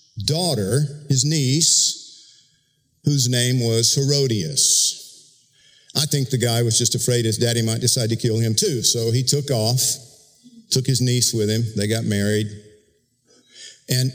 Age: 50-69